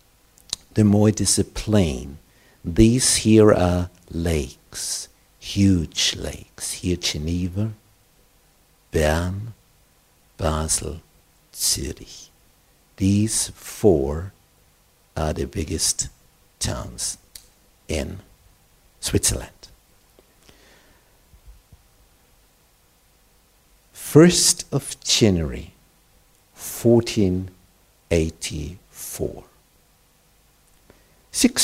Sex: male